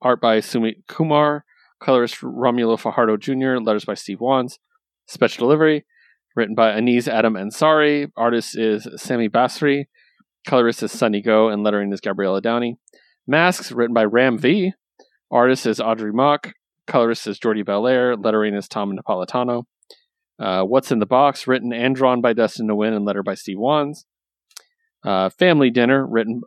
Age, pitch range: 30-49, 110-135 Hz